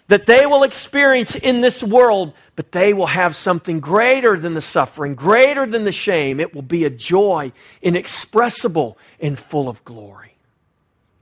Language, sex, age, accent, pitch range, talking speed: English, male, 40-59, American, 135-205 Hz, 160 wpm